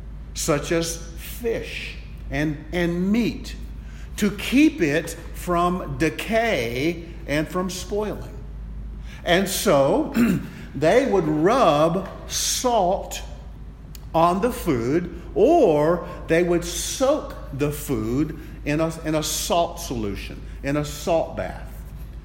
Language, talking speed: English, 100 wpm